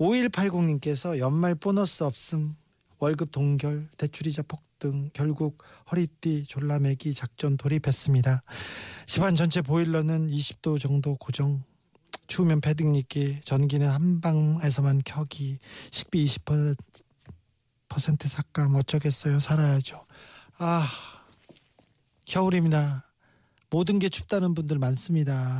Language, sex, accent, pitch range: Korean, male, native, 140-175 Hz